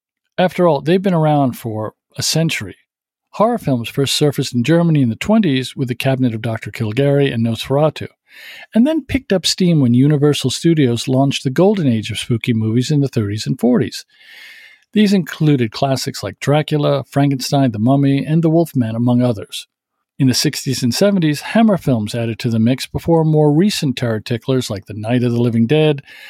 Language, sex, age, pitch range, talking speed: English, male, 50-69, 120-160 Hz, 185 wpm